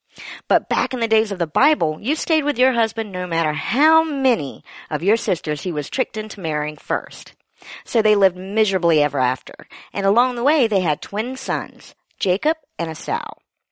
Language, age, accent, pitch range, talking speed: English, 50-69, American, 170-245 Hz, 190 wpm